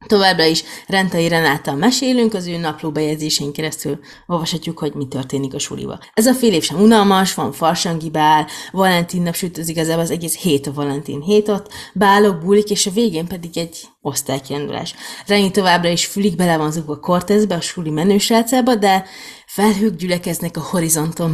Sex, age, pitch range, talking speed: female, 30-49, 160-220 Hz, 165 wpm